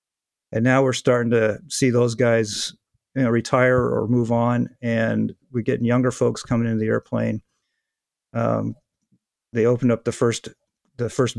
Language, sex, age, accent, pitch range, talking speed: English, male, 50-69, American, 115-130 Hz, 165 wpm